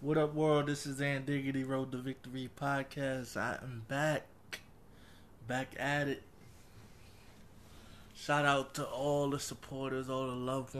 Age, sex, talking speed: 20-39, male, 145 wpm